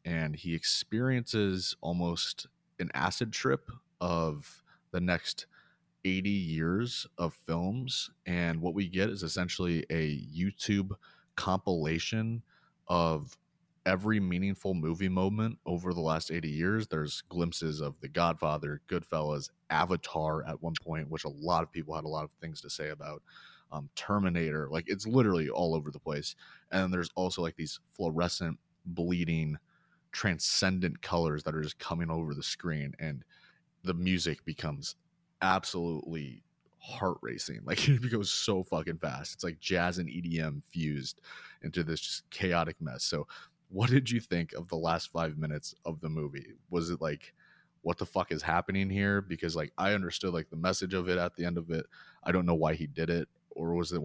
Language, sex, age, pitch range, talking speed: English, male, 30-49, 80-95 Hz, 170 wpm